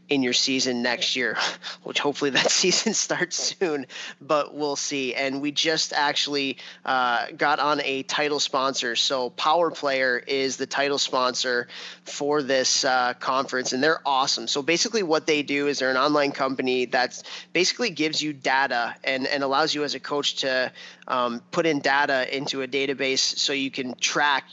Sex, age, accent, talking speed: male, 20-39, American, 175 wpm